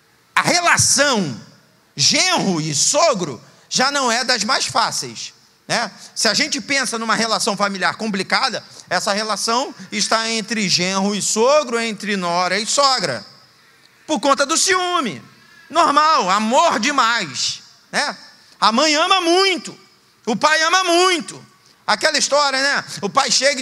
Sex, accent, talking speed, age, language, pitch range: male, Brazilian, 135 wpm, 50-69, Portuguese, 210-290 Hz